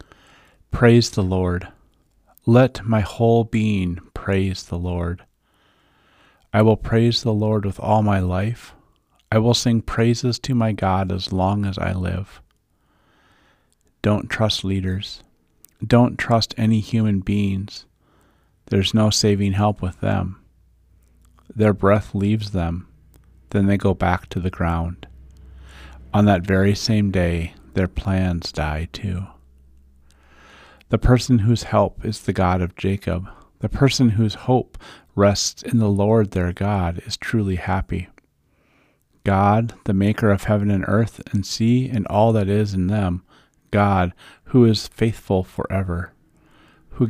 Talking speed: 140 wpm